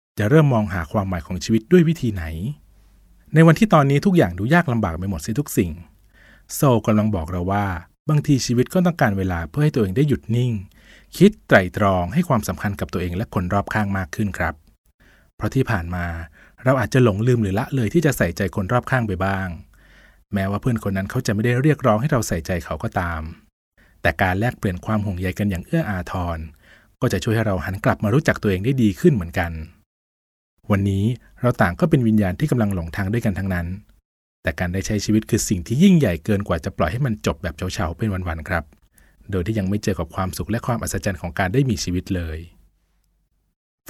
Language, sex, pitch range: Thai, male, 90-125 Hz